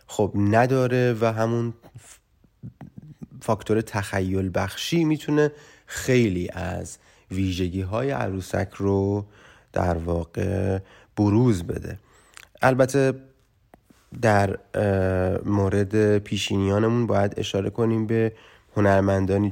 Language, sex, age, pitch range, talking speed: Persian, male, 30-49, 95-115 Hz, 85 wpm